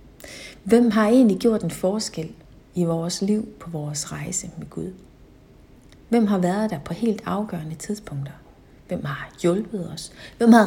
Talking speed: 155 wpm